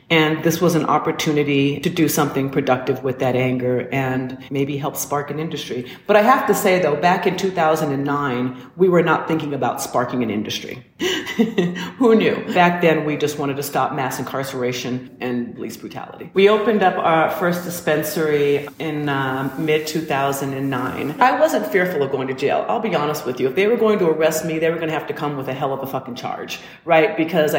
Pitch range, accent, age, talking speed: 140-180 Hz, American, 40-59, 200 wpm